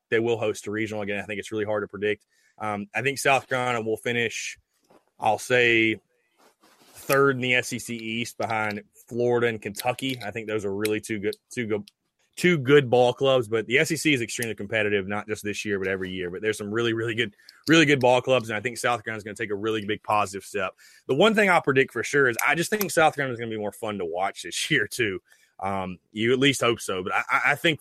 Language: English